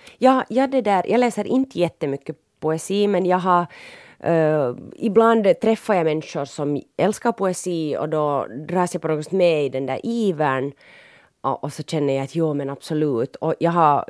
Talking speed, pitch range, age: 180 wpm, 140-185 Hz, 30-49